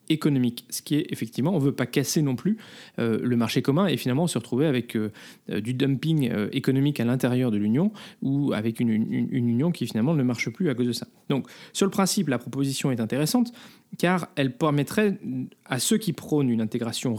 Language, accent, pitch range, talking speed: French, French, 125-185 Hz, 215 wpm